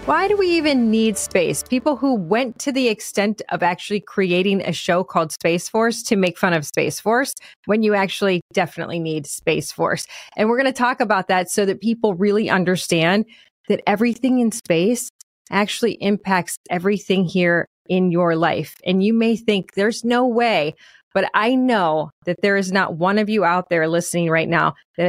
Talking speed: 190 wpm